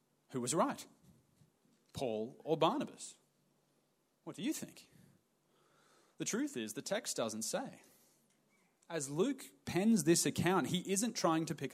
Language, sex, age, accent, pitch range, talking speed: English, male, 30-49, Australian, 135-185 Hz, 140 wpm